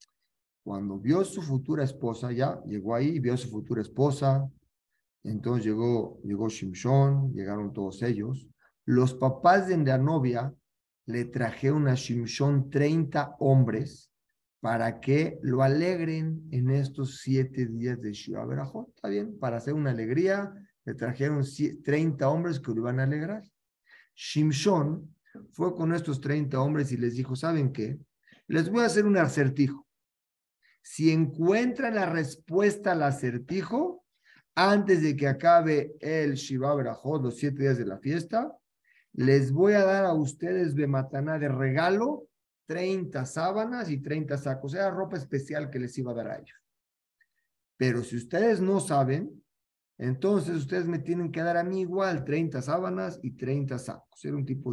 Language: Spanish